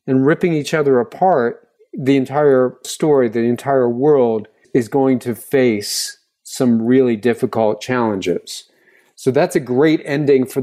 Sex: male